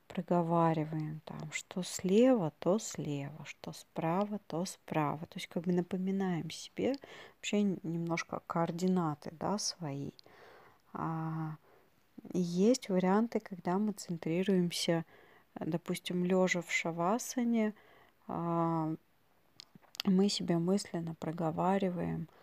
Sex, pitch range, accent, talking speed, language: female, 165-195 Hz, native, 95 wpm, Russian